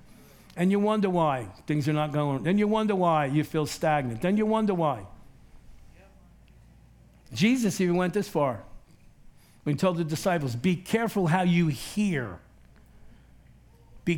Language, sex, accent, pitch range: English, male, American, 120-180 Hz